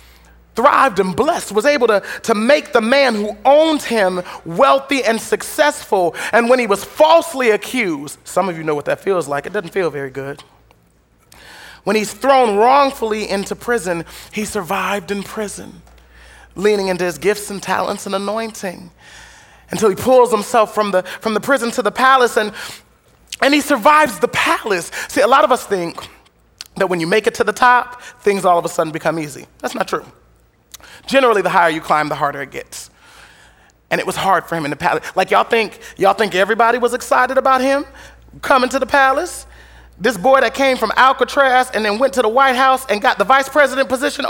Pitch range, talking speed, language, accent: 180-270 Hz, 200 wpm, English, American